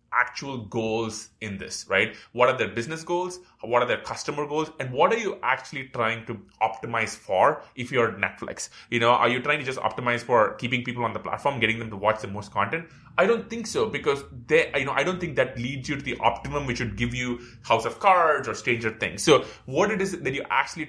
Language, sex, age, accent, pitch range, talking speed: English, male, 20-39, Indian, 110-140 Hz, 235 wpm